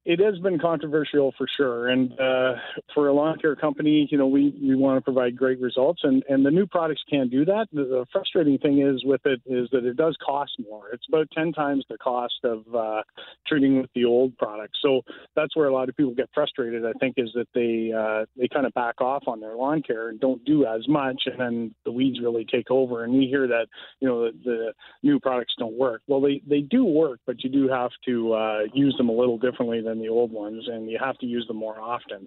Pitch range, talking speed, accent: 120-140 Hz, 245 wpm, American